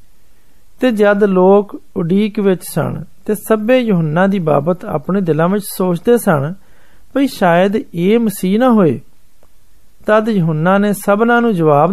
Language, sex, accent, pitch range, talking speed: Hindi, male, native, 165-210 Hz, 115 wpm